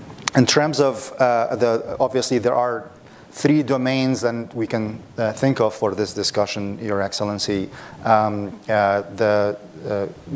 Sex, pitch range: male, 105-120 Hz